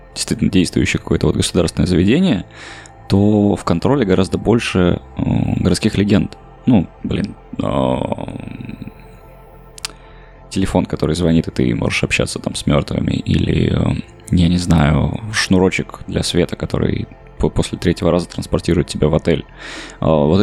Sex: male